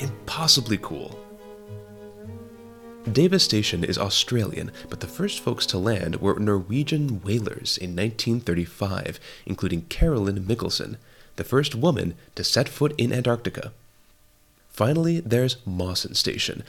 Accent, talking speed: American, 115 wpm